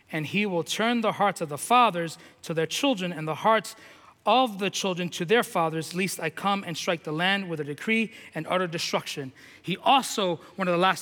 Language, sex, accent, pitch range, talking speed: English, male, American, 185-265 Hz, 220 wpm